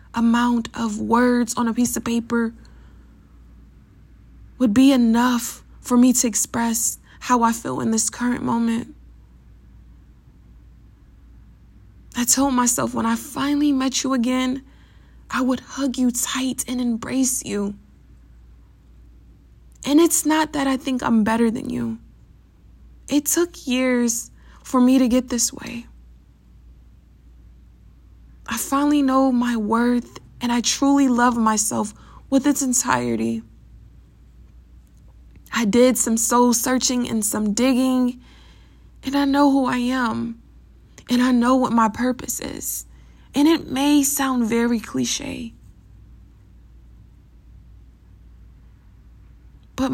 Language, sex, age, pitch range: English, female, 20-39, 225-260 Hz